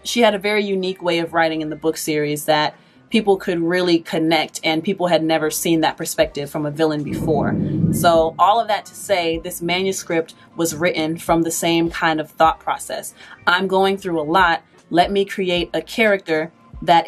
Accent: American